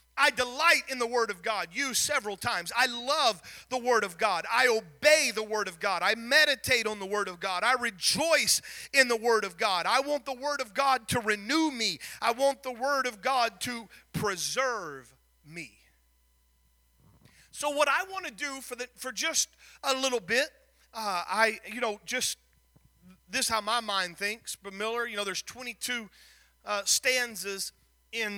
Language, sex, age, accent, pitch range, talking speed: English, male, 40-59, American, 185-250 Hz, 185 wpm